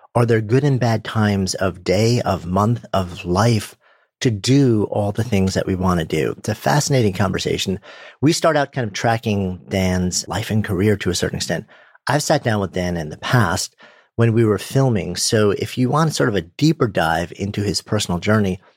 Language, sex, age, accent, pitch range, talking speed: English, male, 40-59, American, 90-120 Hz, 210 wpm